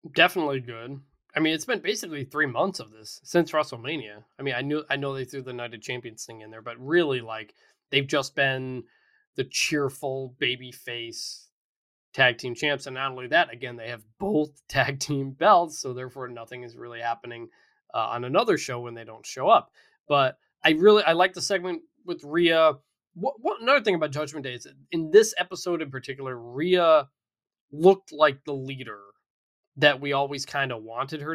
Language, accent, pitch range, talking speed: English, American, 125-160 Hz, 195 wpm